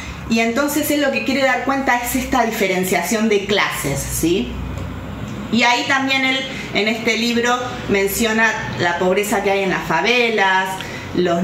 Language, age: Spanish, 30-49